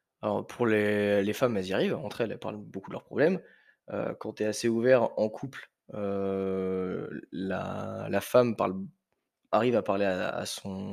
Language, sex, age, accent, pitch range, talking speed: French, male, 20-39, French, 105-135 Hz, 190 wpm